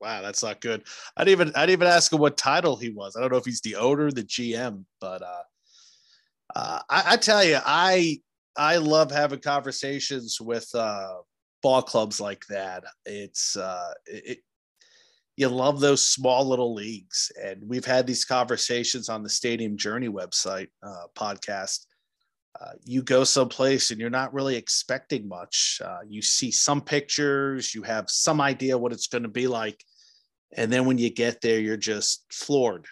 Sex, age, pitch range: male, 30-49, 105-130 Hz